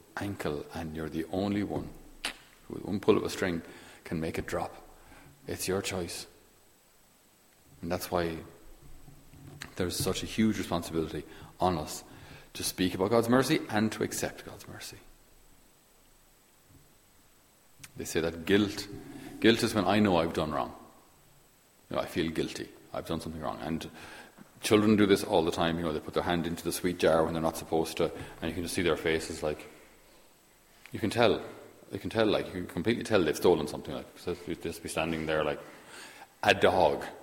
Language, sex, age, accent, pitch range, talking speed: English, male, 40-59, Irish, 85-100 Hz, 185 wpm